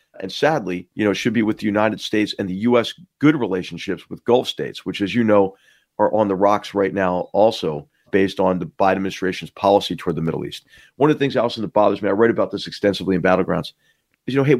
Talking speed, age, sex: 245 wpm, 50-69, male